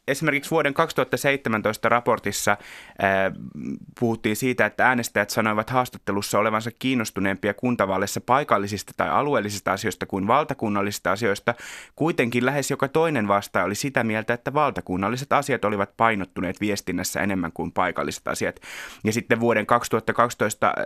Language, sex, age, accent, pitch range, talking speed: Finnish, male, 20-39, native, 100-130 Hz, 125 wpm